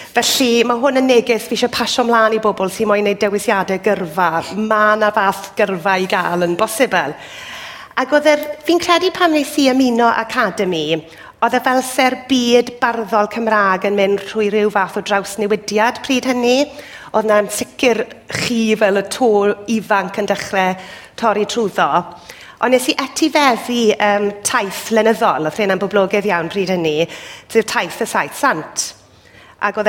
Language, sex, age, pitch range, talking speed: English, female, 40-59, 190-240 Hz, 130 wpm